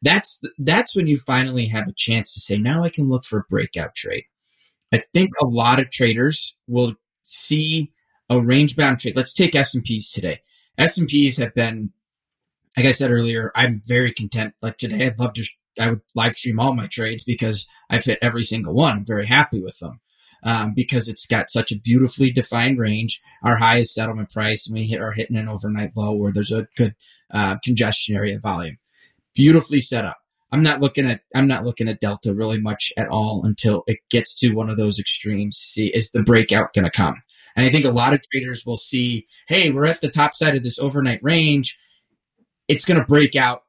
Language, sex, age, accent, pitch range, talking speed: English, male, 30-49, American, 110-135 Hz, 215 wpm